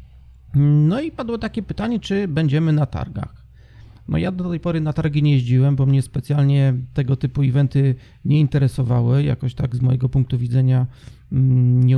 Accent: native